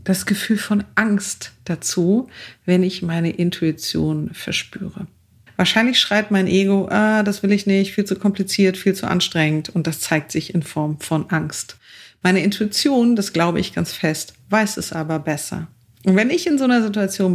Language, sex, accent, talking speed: German, female, German, 175 wpm